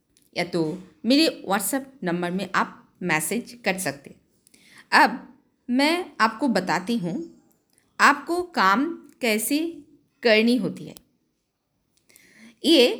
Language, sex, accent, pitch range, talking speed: Hindi, female, native, 200-285 Hz, 105 wpm